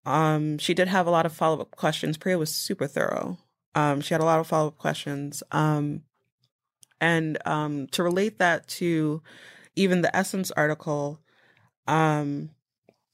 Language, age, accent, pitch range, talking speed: English, 20-39, American, 150-180 Hz, 150 wpm